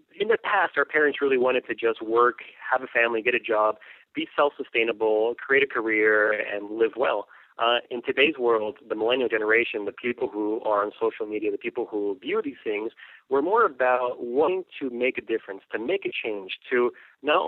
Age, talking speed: 30-49, 200 wpm